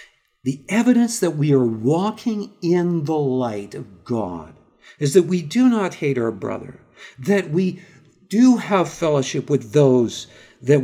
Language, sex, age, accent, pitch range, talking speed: English, male, 50-69, American, 120-170 Hz, 150 wpm